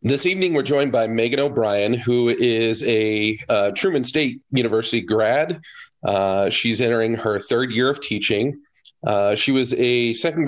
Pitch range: 110-125 Hz